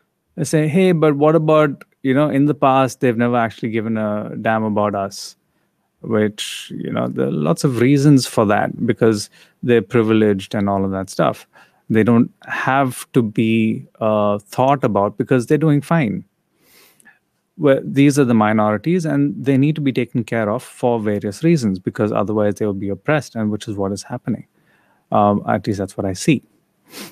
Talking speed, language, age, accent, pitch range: 185 wpm, English, 30-49, Indian, 105-140 Hz